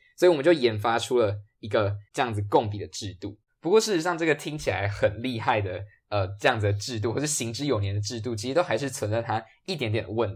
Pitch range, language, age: 105-145 Hz, Chinese, 20-39